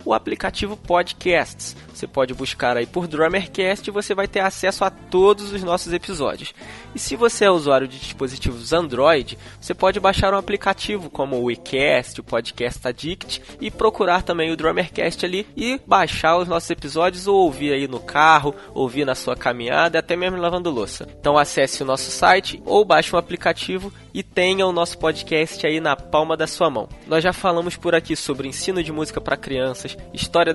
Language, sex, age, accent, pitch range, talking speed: Portuguese, male, 20-39, Brazilian, 135-175 Hz, 185 wpm